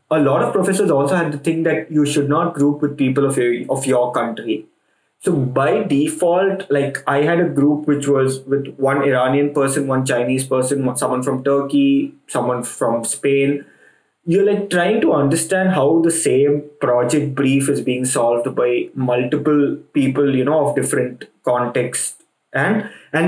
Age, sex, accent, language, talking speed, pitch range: 20-39, male, Indian, English, 170 wpm, 135-165 Hz